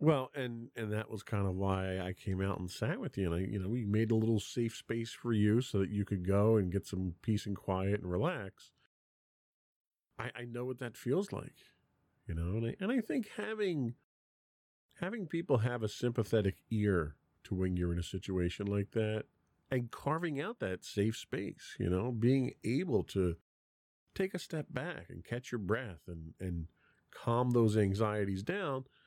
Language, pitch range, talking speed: English, 95-125 Hz, 190 wpm